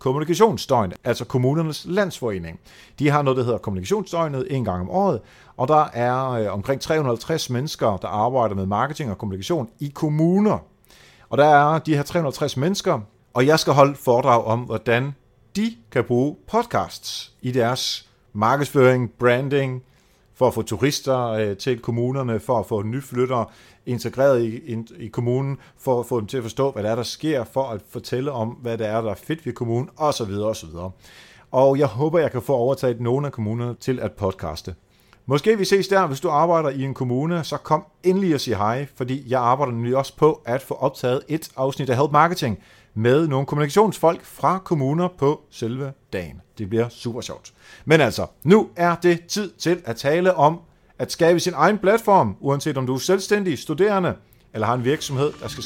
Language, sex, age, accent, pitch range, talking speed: Danish, male, 40-59, native, 115-155 Hz, 185 wpm